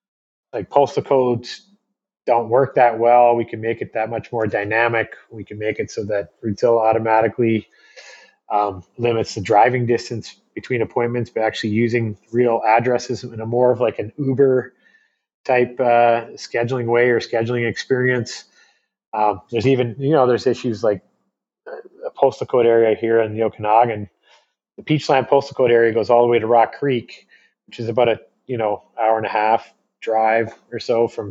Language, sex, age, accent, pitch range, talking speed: English, male, 30-49, American, 110-130 Hz, 175 wpm